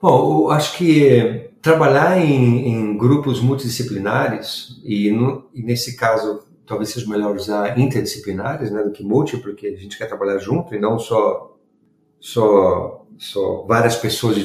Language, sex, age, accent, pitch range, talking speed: Portuguese, male, 50-69, Brazilian, 105-130 Hz, 155 wpm